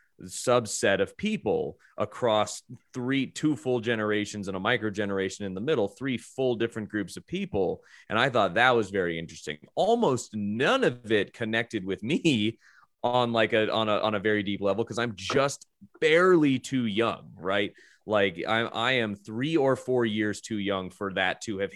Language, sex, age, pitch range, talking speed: English, male, 30-49, 95-115 Hz, 180 wpm